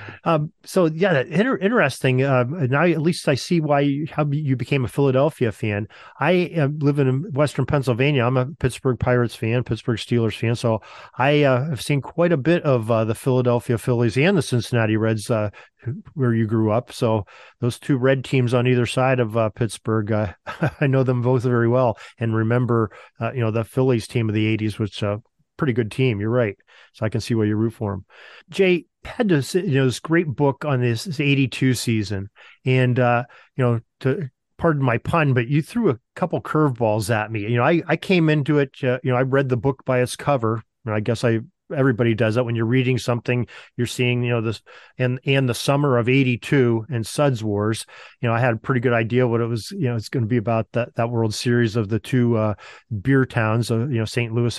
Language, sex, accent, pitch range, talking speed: English, male, American, 115-140 Hz, 230 wpm